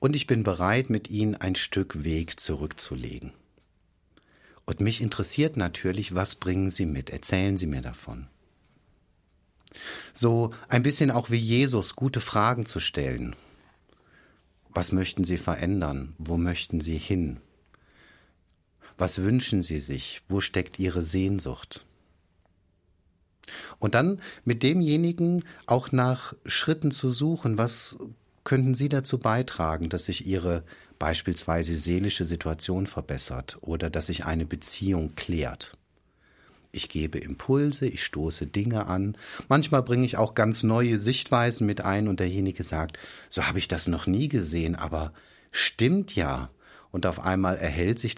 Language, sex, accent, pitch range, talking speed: German, male, German, 85-115 Hz, 135 wpm